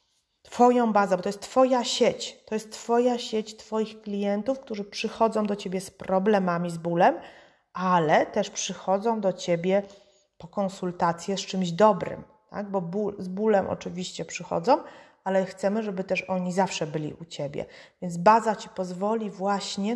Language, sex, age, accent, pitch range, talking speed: Polish, female, 30-49, native, 180-220 Hz, 150 wpm